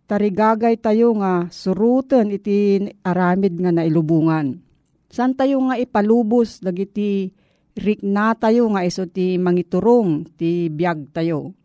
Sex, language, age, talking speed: female, Filipino, 50-69, 120 wpm